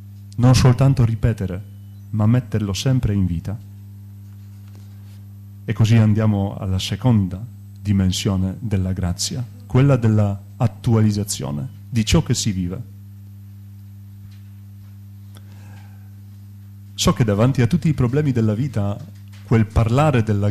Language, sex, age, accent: Italian, male, 40-59, native